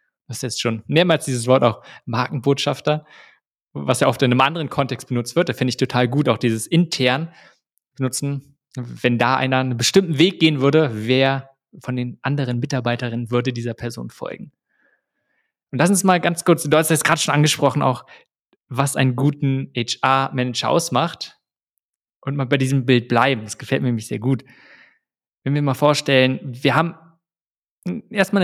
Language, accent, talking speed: German, German, 170 wpm